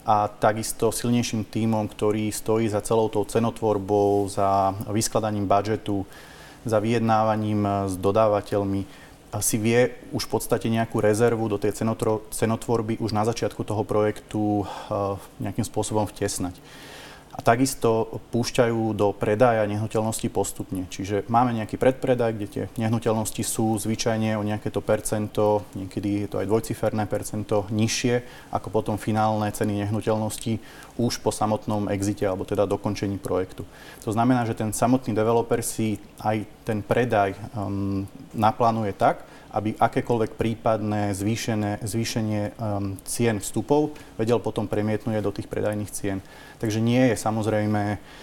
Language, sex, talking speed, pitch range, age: Slovak, male, 130 wpm, 105-115 Hz, 30-49